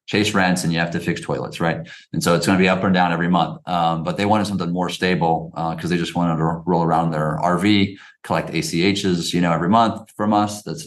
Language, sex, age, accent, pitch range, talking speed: English, male, 30-49, American, 80-95 Hz, 260 wpm